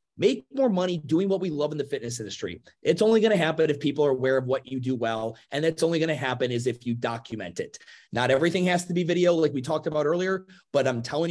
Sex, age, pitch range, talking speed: male, 30-49, 130-170 Hz, 265 wpm